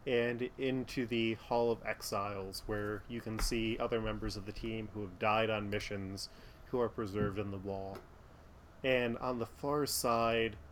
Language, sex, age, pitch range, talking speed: English, male, 20-39, 110-125 Hz, 175 wpm